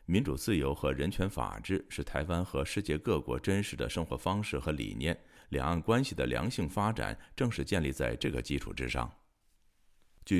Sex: male